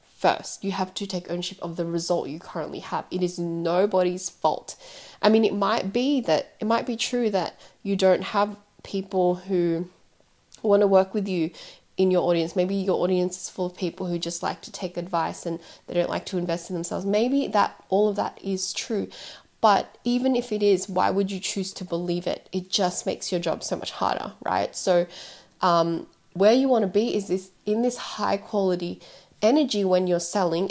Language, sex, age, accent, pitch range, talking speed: English, female, 20-39, Australian, 170-200 Hz, 205 wpm